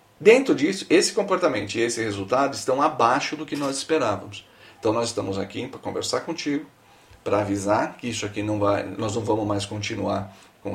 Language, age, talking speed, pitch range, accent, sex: Portuguese, 40-59, 185 wpm, 105-155 Hz, Brazilian, male